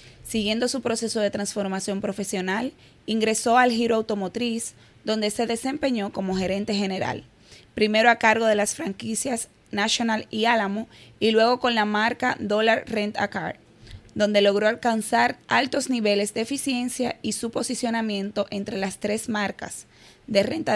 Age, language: 20-39, Spanish